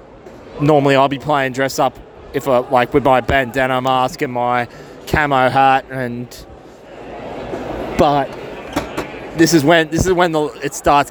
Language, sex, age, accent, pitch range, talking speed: English, male, 20-39, Australian, 130-150 Hz, 150 wpm